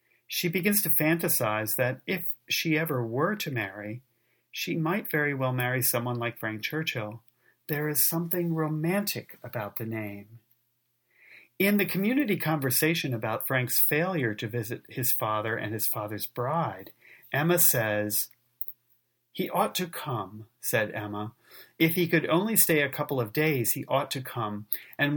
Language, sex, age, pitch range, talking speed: English, male, 40-59, 115-150 Hz, 155 wpm